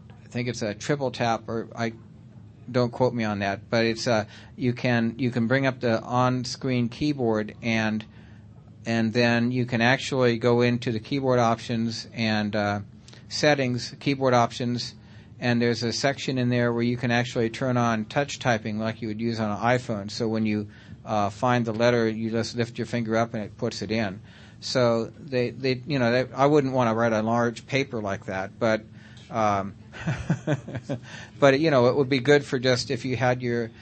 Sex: male